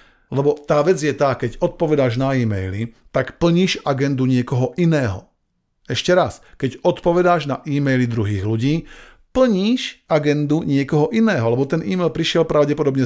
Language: Slovak